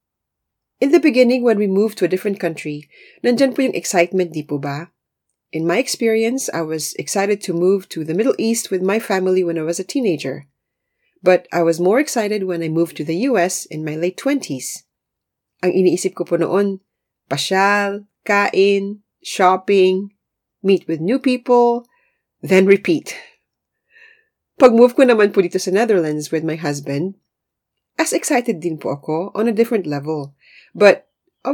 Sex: female